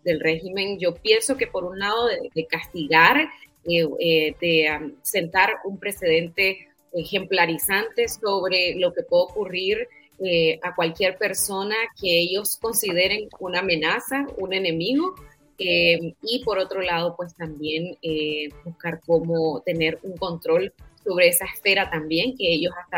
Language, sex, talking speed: Spanish, female, 145 wpm